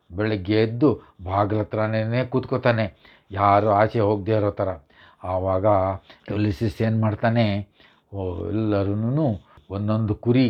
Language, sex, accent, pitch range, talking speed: English, male, Indian, 100-125 Hz, 120 wpm